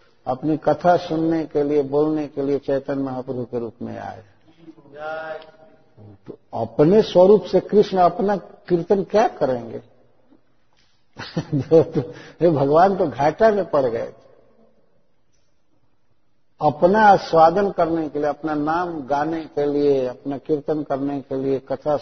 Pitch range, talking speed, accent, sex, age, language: 130-175 Hz, 130 wpm, native, male, 50-69, Hindi